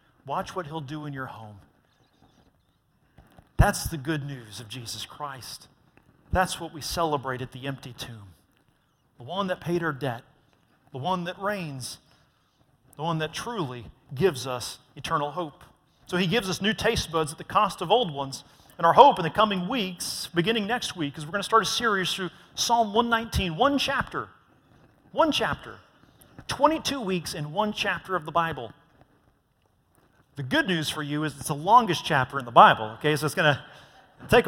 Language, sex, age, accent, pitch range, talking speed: English, male, 40-59, American, 140-200 Hz, 180 wpm